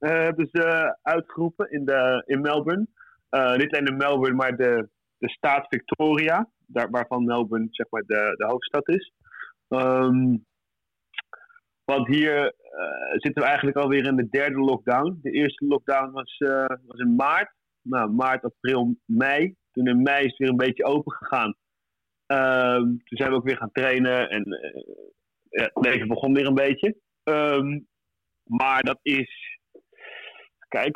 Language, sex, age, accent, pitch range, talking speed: English, male, 30-49, Dutch, 130-155 Hz, 160 wpm